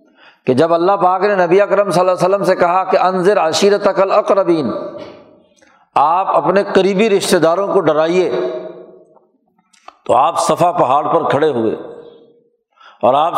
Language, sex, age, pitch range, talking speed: Urdu, male, 60-79, 165-210 Hz, 150 wpm